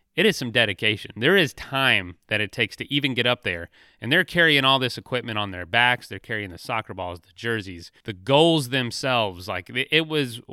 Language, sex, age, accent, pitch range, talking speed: English, male, 30-49, American, 105-135 Hz, 210 wpm